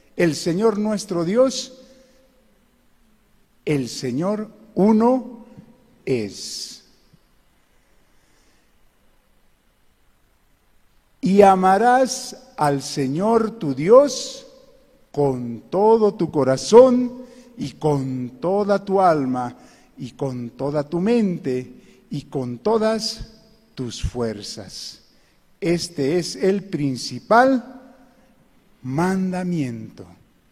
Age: 50-69